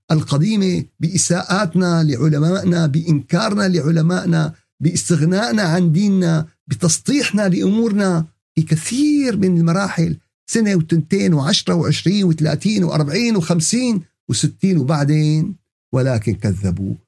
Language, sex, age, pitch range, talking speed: Arabic, male, 50-69, 120-170 Hz, 90 wpm